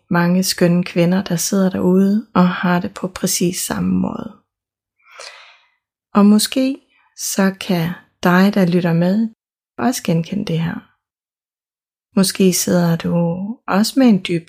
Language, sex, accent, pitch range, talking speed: Danish, female, native, 180-215 Hz, 135 wpm